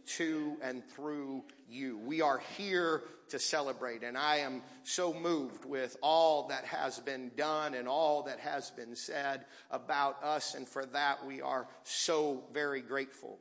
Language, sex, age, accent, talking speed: English, male, 40-59, American, 160 wpm